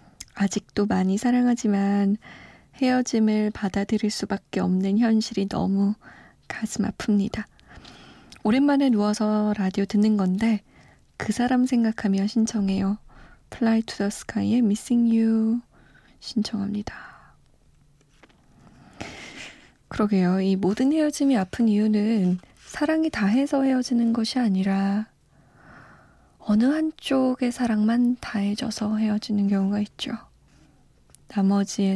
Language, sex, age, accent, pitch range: Korean, female, 20-39, native, 200-245 Hz